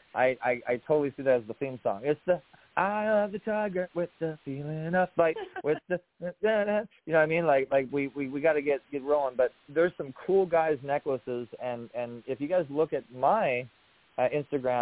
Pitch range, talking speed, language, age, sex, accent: 125-160 Hz, 220 wpm, English, 20-39, male, American